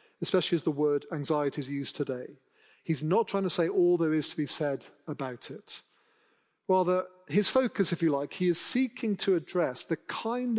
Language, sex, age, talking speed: English, male, 40-59, 195 wpm